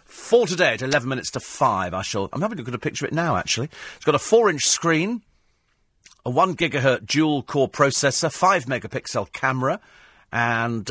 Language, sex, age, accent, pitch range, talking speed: English, male, 40-59, British, 110-160 Hz, 165 wpm